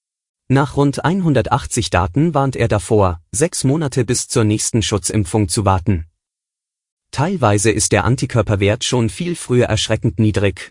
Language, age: German, 30-49